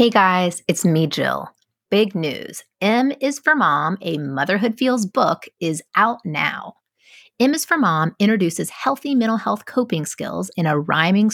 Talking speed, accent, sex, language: 165 wpm, American, female, English